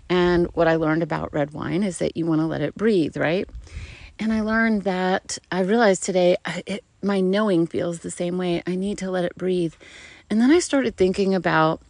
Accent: American